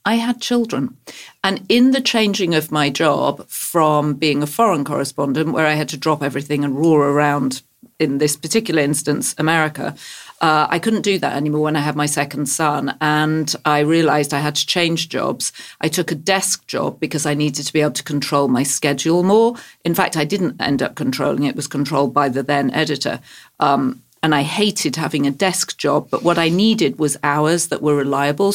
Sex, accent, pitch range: female, British, 145-170 Hz